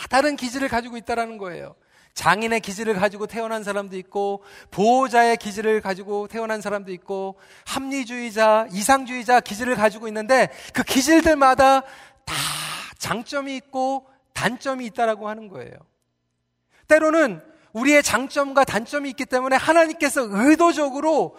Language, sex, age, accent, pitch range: Korean, male, 40-59, native, 225-280 Hz